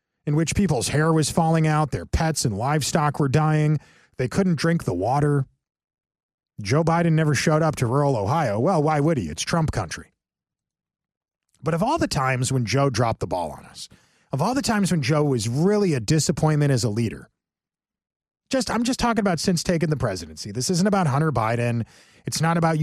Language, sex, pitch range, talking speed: English, male, 130-180 Hz, 195 wpm